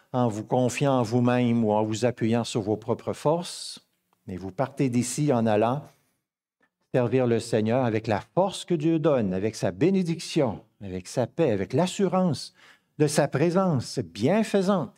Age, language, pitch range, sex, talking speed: 50-69, French, 125-170 Hz, male, 160 wpm